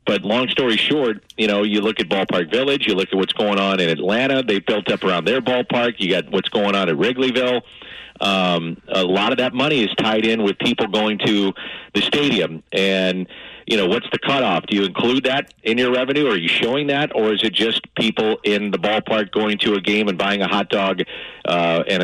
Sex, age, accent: male, 40-59, American